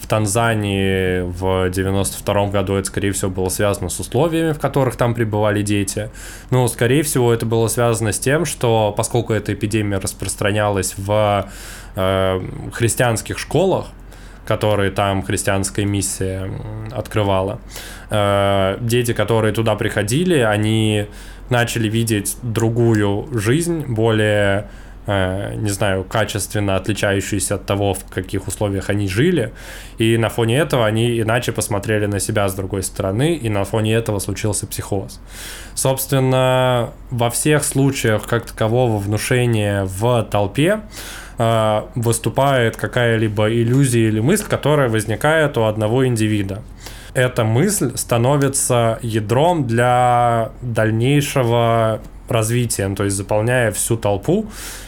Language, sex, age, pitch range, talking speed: Russian, male, 20-39, 100-120 Hz, 120 wpm